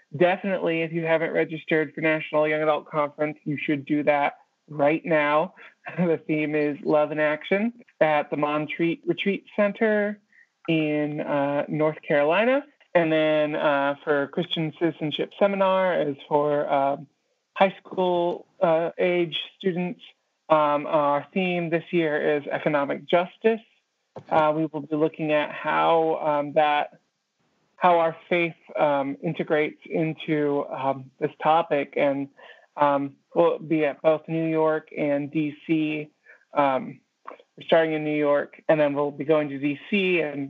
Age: 20-39